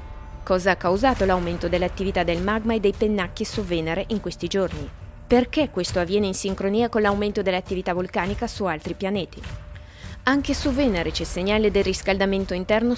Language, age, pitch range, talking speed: Italian, 20-39, 180-220 Hz, 160 wpm